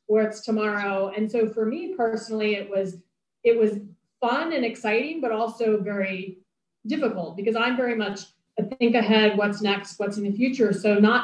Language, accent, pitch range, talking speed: English, American, 195-235 Hz, 175 wpm